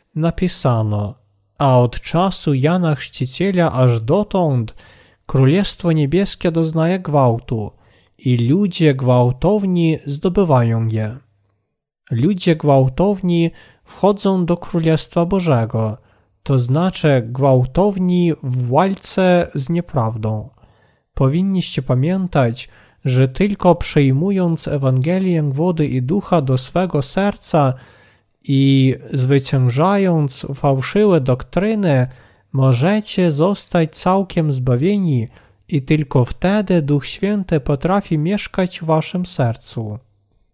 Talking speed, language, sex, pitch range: 90 wpm, Polish, male, 130-180 Hz